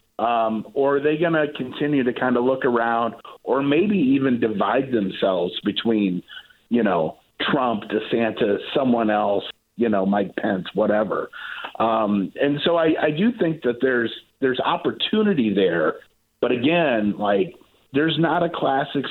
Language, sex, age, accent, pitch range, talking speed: English, male, 50-69, American, 110-155 Hz, 150 wpm